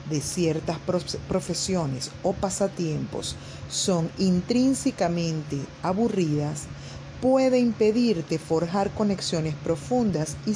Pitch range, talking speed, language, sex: 145-210 Hz, 80 wpm, Spanish, female